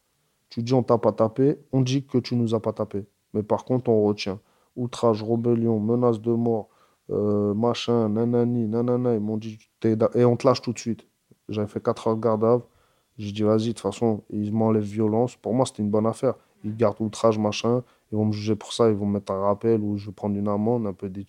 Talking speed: 240 wpm